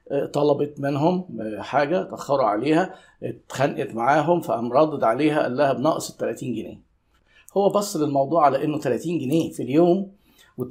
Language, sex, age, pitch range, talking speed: Arabic, male, 50-69, 140-175 Hz, 135 wpm